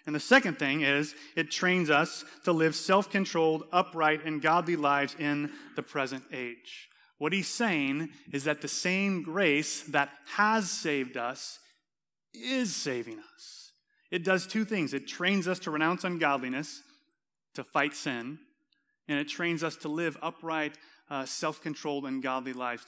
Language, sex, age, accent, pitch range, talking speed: English, male, 30-49, American, 140-170 Hz, 155 wpm